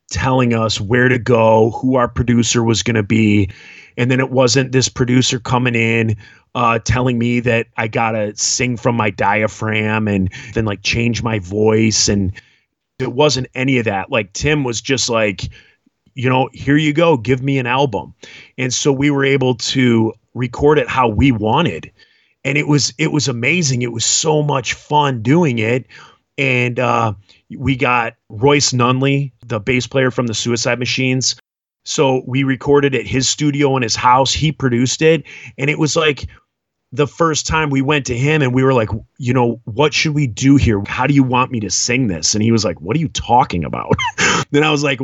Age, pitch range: 30-49, 115-140 Hz